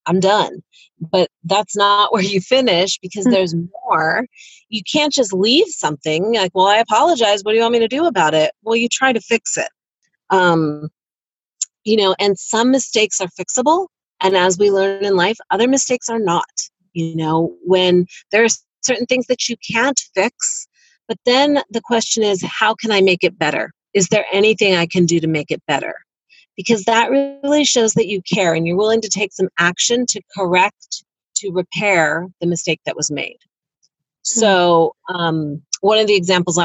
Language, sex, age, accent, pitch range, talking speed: English, female, 30-49, American, 165-230 Hz, 185 wpm